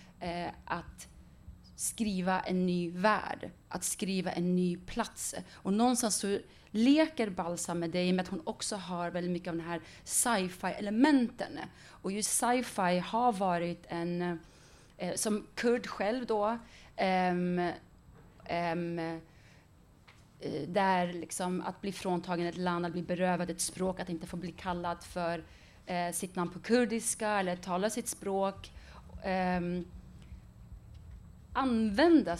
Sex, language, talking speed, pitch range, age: female, English, 130 wpm, 175-215 Hz, 30-49